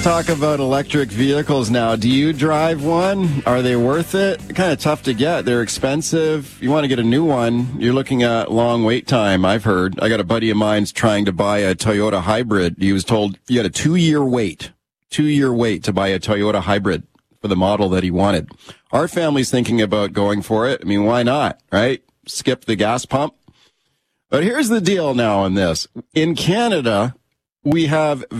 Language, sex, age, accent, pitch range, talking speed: English, male, 40-59, American, 115-155 Hz, 205 wpm